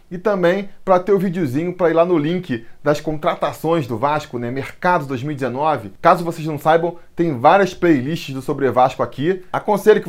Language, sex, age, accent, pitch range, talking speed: Portuguese, male, 20-39, Brazilian, 145-190 Hz, 190 wpm